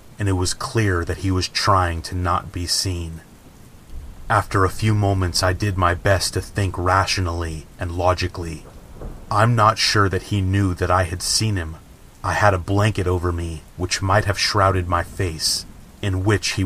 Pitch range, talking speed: 90-100 Hz, 185 wpm